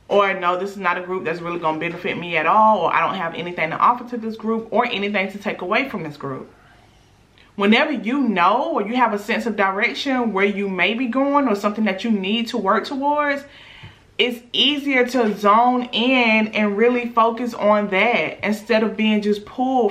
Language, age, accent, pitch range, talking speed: English, 30-49, American, 195-245 Hz, 215 wpm